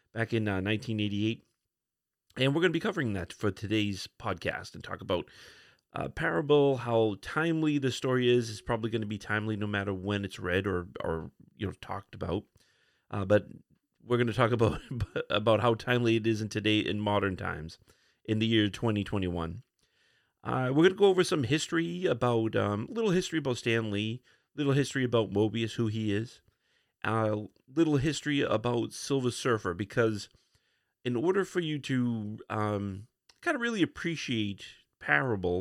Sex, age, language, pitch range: male, 40-59, English, 105-130 Hz